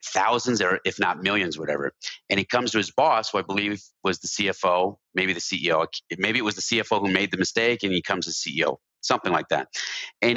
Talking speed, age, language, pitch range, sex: 225 wpm, 40-59, English, 100-125 Hz, male